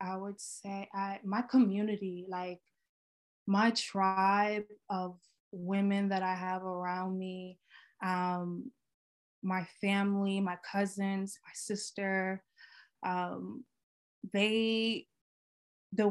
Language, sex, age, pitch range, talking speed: English, female, 20-39, 195-225 Hz, 95 wpm